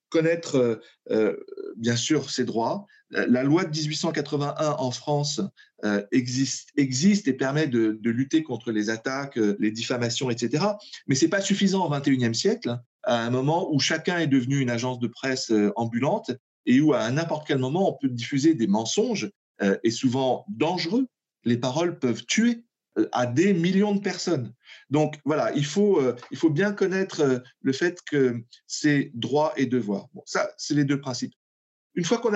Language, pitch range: French, 125-170 Hz